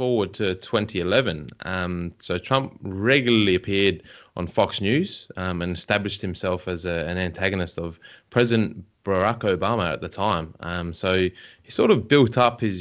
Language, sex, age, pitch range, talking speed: English, male, 20-39, 90-115 Hz, 160 wpm